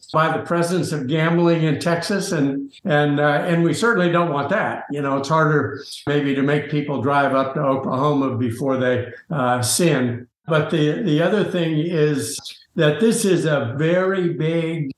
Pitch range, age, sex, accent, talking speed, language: 150-180 Hz, 60-79, male, American, 175 wpm, English